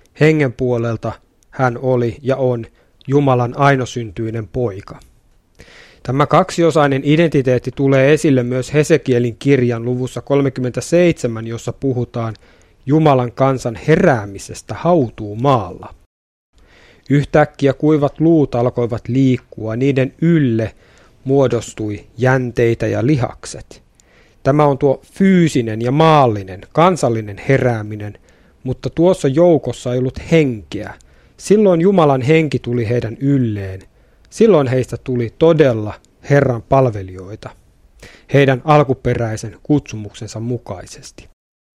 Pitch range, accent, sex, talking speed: 115-145 Hz, native, male, 95 wpm